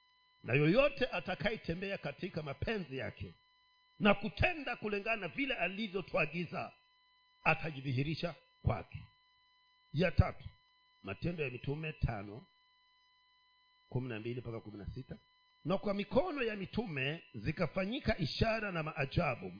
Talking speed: 95 wpm